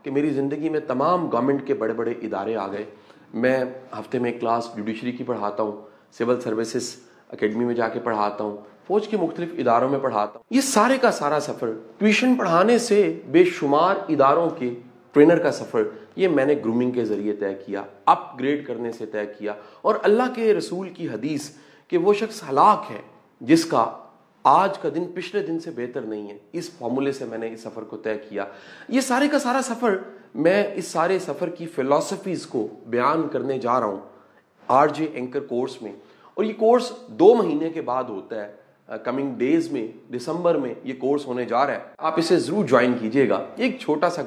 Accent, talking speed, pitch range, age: Indian, 195 wpm, 115-180 Hz, 30-49